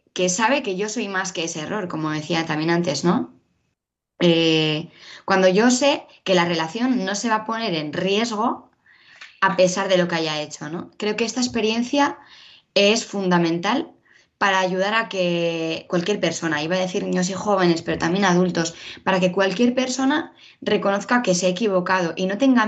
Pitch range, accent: 170-210 Hz, Spanish